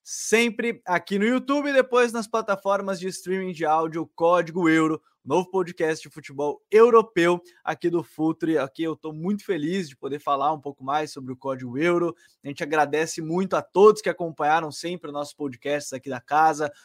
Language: Portuguese